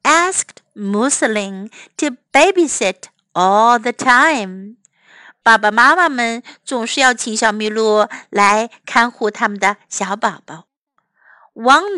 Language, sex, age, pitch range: Chinese, female, 60-79, 225-320 Hz